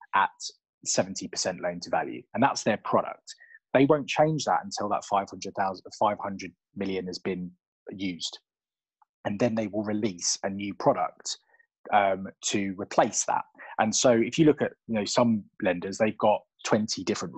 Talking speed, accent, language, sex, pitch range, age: 165 wpm, British, English, male, 95-120 Hz, 20-39